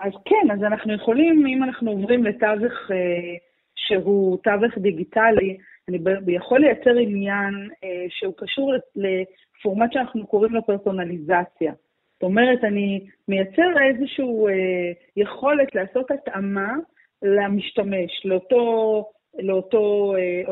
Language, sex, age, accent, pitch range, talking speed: Hebrew, female, 40-59, native, 190-255 Hz, 110 wpm